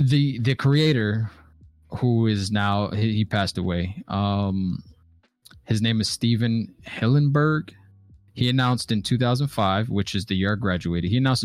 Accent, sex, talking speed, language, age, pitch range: American, male, 145 wpm, English, 20-39, 95-115 Hz